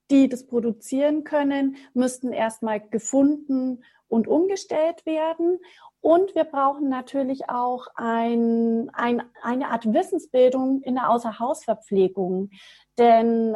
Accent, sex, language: German, female, German